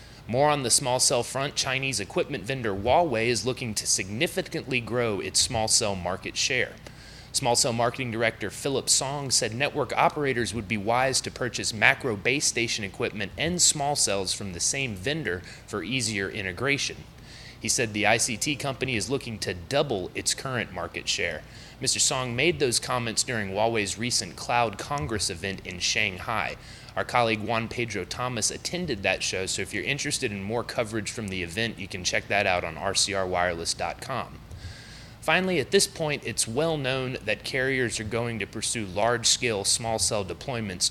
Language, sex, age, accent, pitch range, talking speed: English, male, 30-49, American, 105-130 Hz, 170 wpm